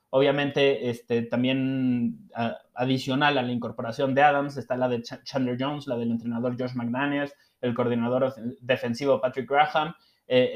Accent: Mexican